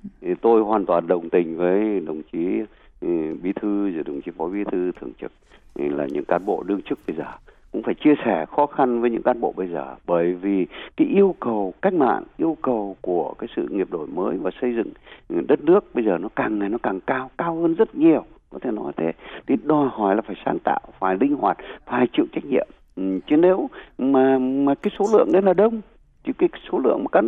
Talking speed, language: 230 wpm, Vietnamese